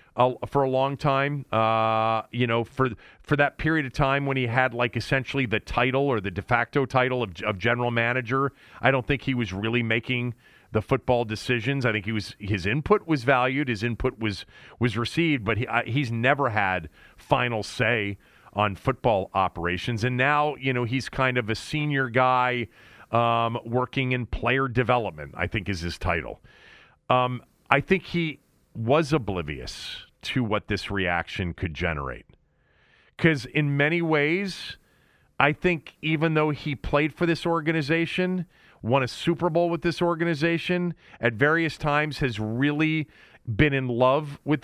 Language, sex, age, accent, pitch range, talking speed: English, male, 40-59, American, 115-155 Hz, 170 wpm